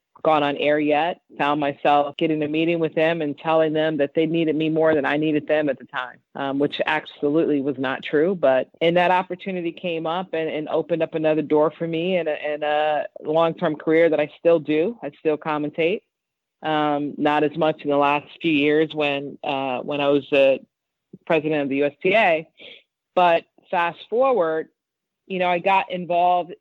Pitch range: 145-165 Hz